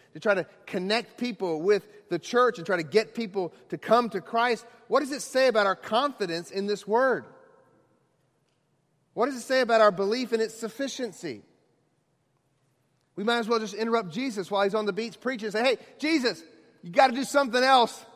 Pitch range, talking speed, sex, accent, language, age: 155-250 Hz, 200 wpm, male, American, English, 40-59